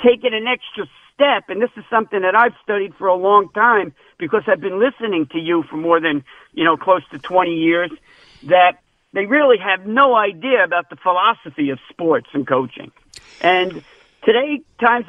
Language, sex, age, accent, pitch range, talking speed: English, male, 50-69, American, 190-245 Hz, 185 wpm